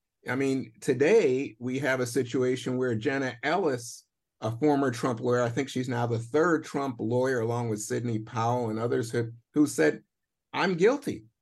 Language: English